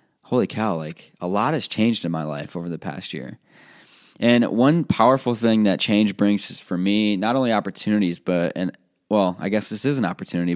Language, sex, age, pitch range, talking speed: English, male, 20-39, 90-110 Hz, 205 wpm